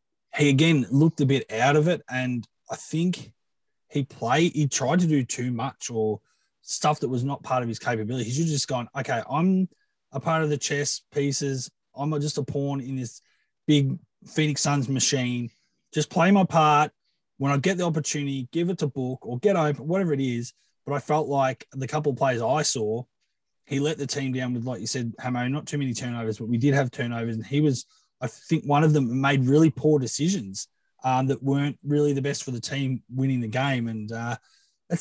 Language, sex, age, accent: English, male, 20-39, Australian